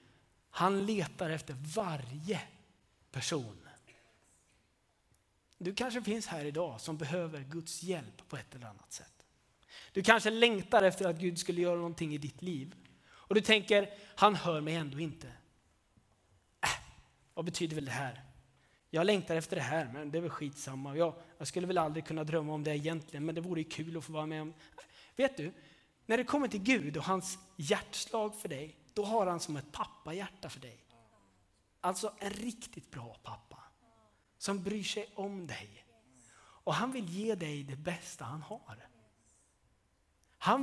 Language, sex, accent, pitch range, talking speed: Swedish, male, native, 150-220 Hz, 170 wpm